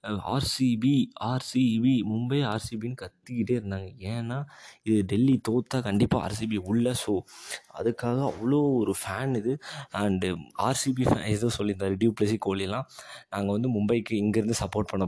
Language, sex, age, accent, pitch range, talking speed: Tamil, male, 20-39, native, 100-120 Hz, 125 wpm